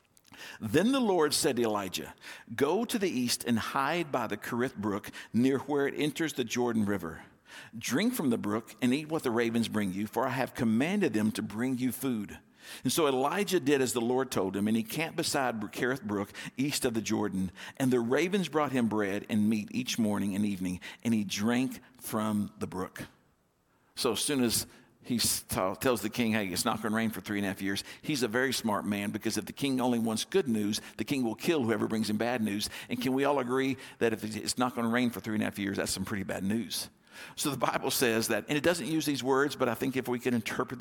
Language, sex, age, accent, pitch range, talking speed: English, male, 50-69, American, 105-135 Hz, 240 wpm